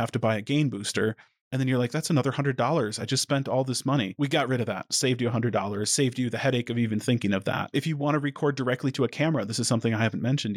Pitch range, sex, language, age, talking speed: 120-155 Hz, male, English, 30-49, 300 wpm